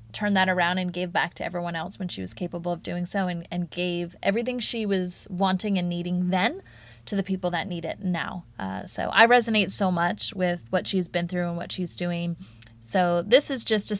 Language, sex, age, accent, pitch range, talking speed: English, female, 20-39, American, 180-210 Hz, 225 wpm